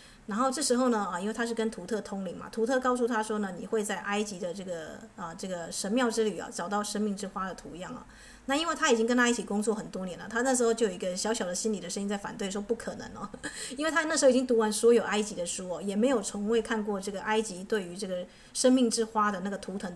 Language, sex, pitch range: Chinese, female, 200-240 Hz